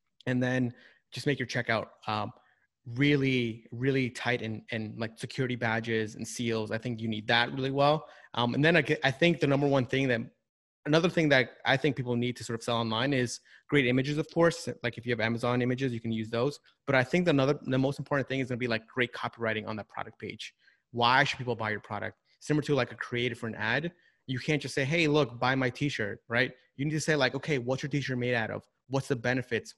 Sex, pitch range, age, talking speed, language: male, 115-140 Hz, 20-39, 240 wpm, English